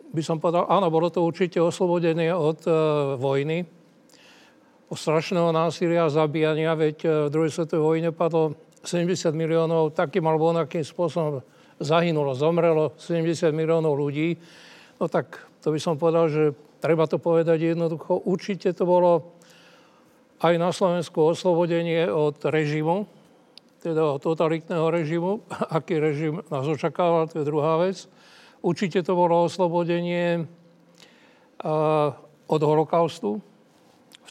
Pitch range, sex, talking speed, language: 160-185 Hz, male, 120 wpm, Slovak